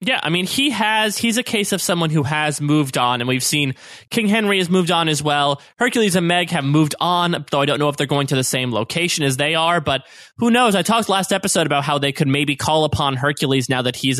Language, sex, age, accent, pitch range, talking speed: English, male, 20-39, American, 140-210 Hz, 260 wpm